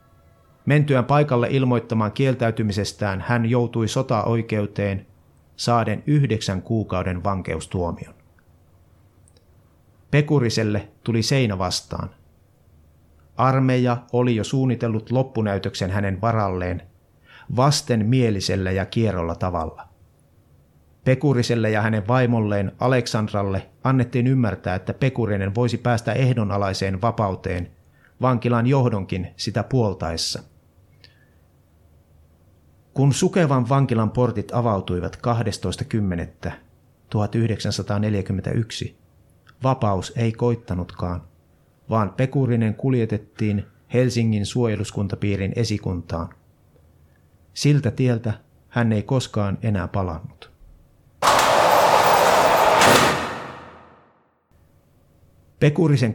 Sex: male